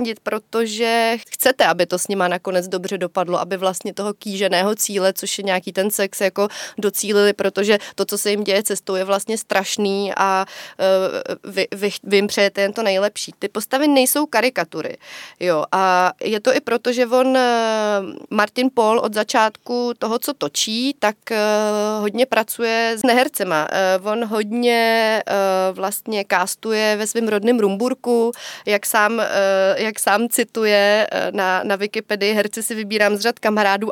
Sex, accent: female, native